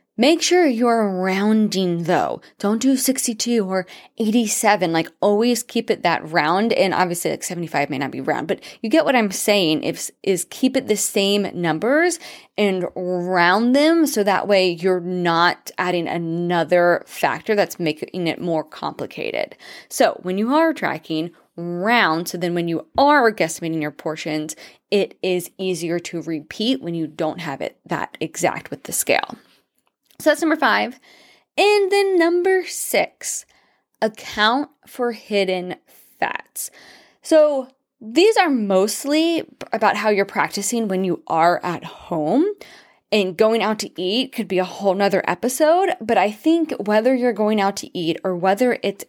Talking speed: 160 wpm